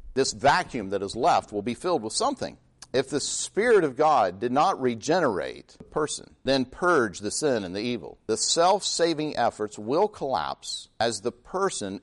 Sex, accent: male, American